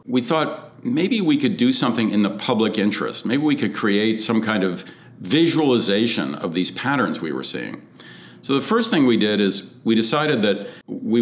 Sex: male